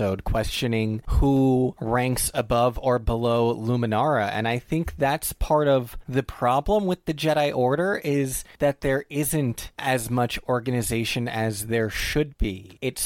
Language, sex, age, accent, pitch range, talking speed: English, male, 30-49, American, 110-140 Hz, 145 wpm